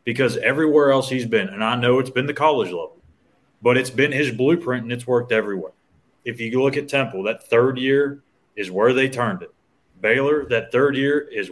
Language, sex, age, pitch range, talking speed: English, male, 30-49, 110-140 Hz, 210 wpm